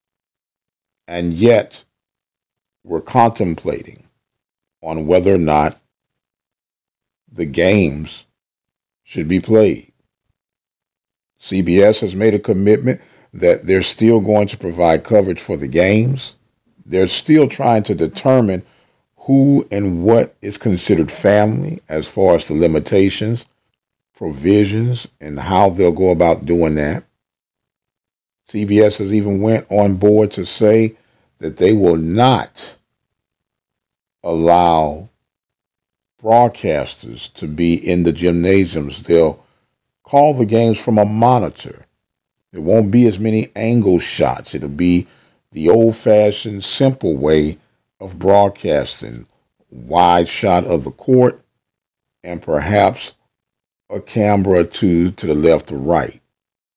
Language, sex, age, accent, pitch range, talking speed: English, male, 50-69, American, 85-110 Hz, 115 wpm